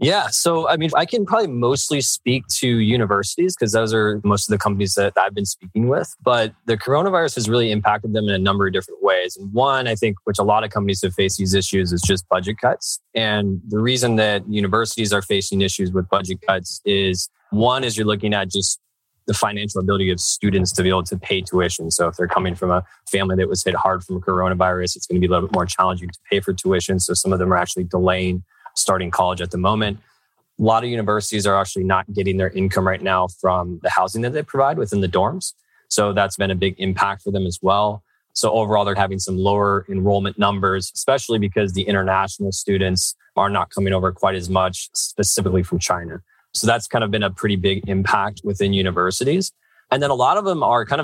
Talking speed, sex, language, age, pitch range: 225 wpm, male, English, 20-39, 95-110 Hz